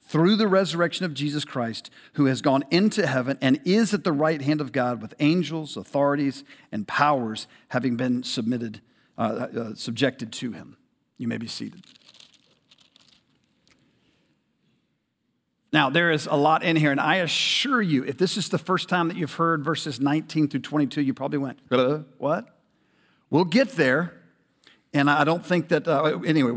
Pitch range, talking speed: 125-155 Hz, 165 wpm